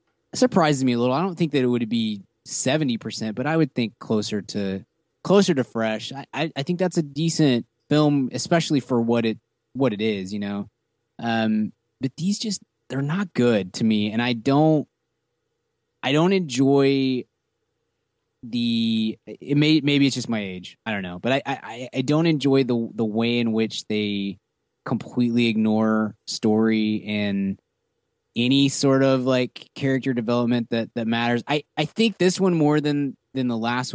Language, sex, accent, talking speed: English, male, American, 175 wpm